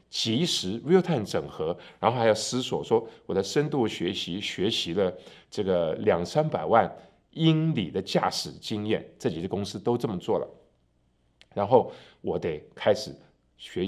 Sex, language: male, Chinese